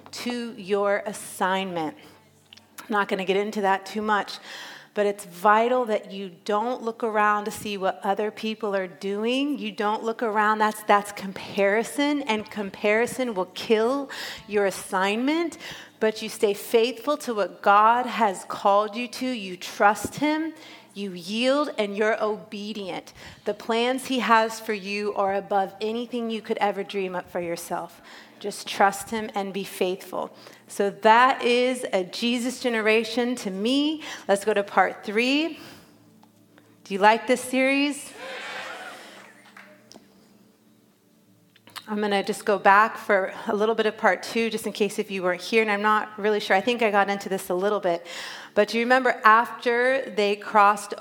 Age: 30-49